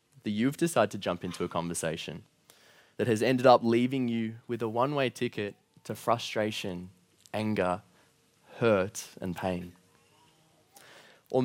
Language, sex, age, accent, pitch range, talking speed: English, male, 20-39, Australian, 105-130 Hz, 130 wpm